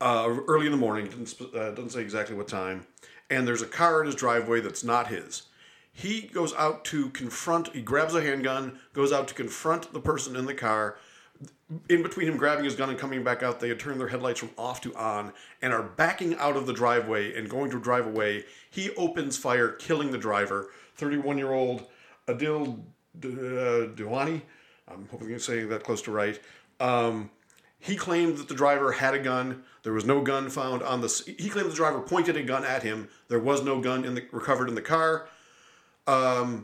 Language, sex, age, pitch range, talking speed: English, male, 40-59, 120-155 Hz, 205 wpm